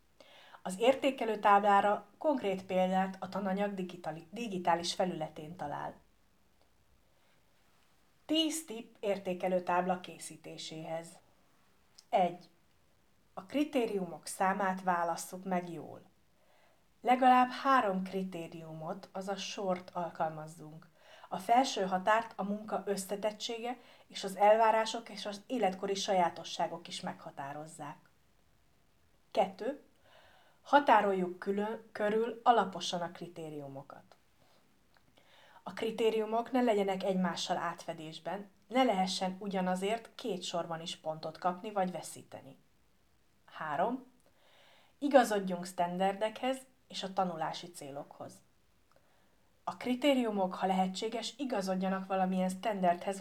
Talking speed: 90 wpm